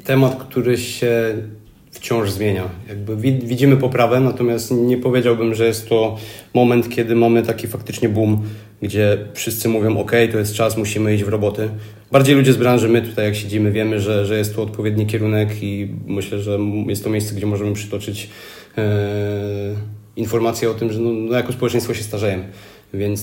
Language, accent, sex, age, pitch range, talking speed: Polish, native, male, 30-49, 105-110 Hz, 165 wpm